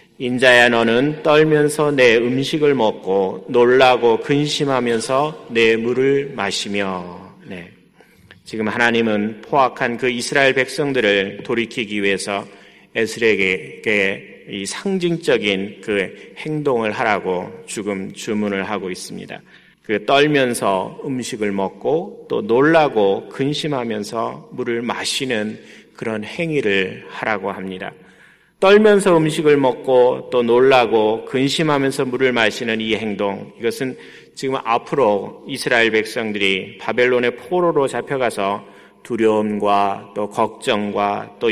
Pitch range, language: 105-140 Hz, Korean